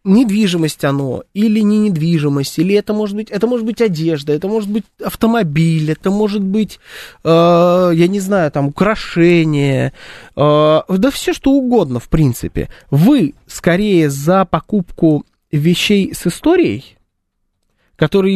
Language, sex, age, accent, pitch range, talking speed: Russian, male, 20-39, native, 150-205 Hz, 135 wpm